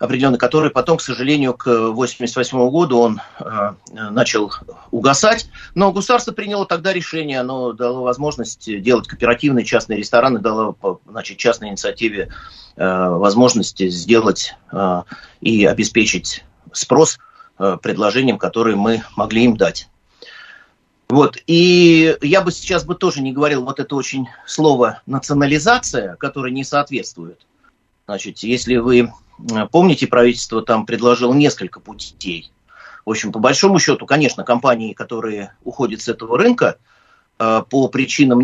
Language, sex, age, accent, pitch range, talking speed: Russian, male, 30-49, native, 110-145 Hz, 130 wpm